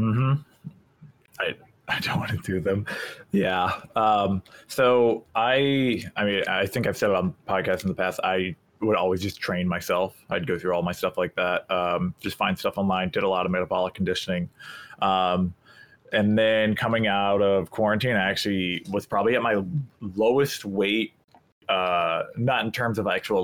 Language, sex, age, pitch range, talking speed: English, male, 20-39, 95-115 Hz, 180 wpm